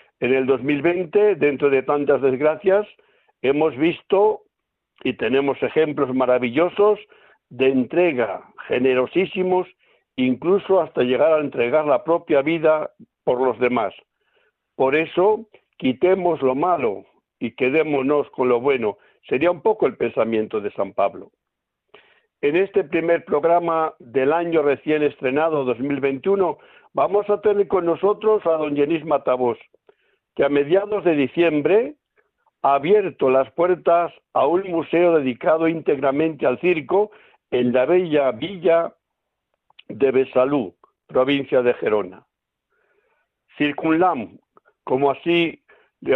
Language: Spanish